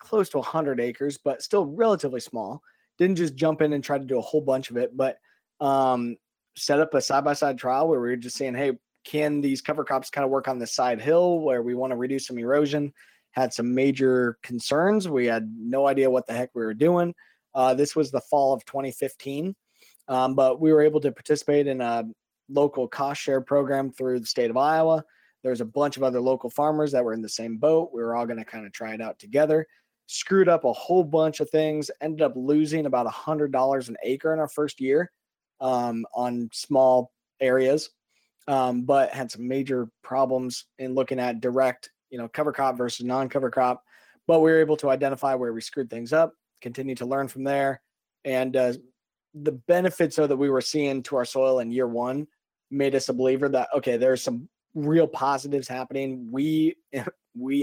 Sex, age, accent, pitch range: male, 20-39, American, 125-150 Hz